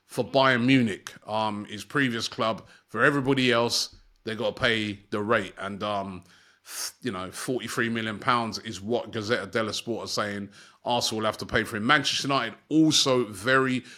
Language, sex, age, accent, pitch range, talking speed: English, male, 30-49, British, 120-145 Hz, 175 wpm